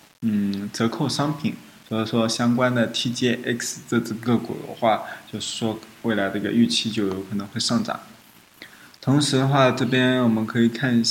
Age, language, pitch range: 20-39, Chinese, 110-125 Hz